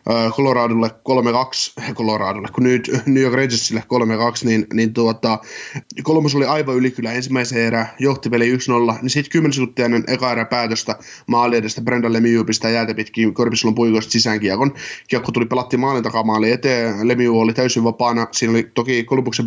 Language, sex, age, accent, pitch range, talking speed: Finnish, male, 20-39, native, 115-130 Hz, 150 wpm